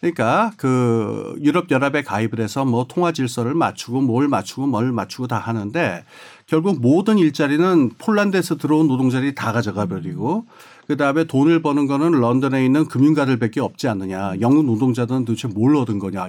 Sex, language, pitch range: male, Korean, 120-170 Hz